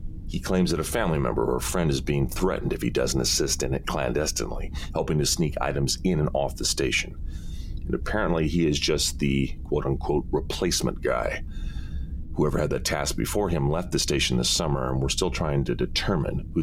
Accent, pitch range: American, 70-80 Hz